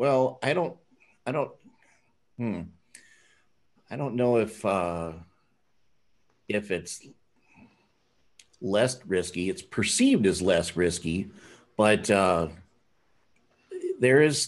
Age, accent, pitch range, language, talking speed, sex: 50-69, American, 90-115 Hz, English, 100 wpm, male